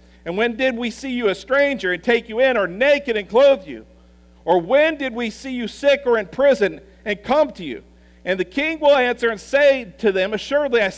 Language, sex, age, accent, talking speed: English, male, 50-69, American, 230 wpm